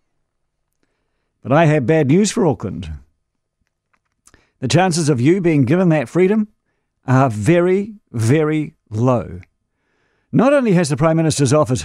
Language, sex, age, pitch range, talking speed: English, male, 50-69, 125-180 Hz, 130 wpm